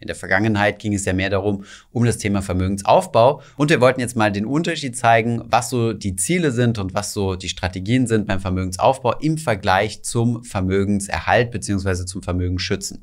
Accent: German